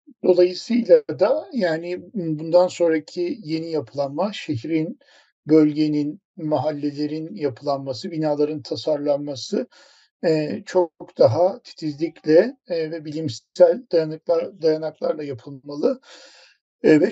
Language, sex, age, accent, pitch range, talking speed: Turkish, male, 50-69, native, 155-190 Hz, 75 wpm